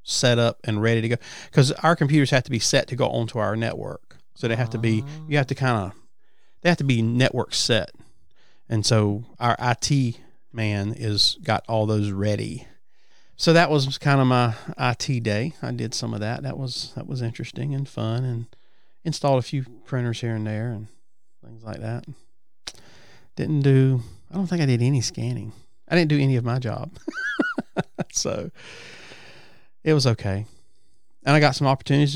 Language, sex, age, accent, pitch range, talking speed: English, male, 40-59, American, 110-140 Hz, 190 wpm